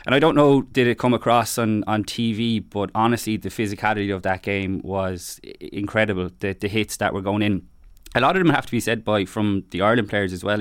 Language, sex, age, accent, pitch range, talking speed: English, male, 20-39, Irish, 100-110 Hz, 240 wpm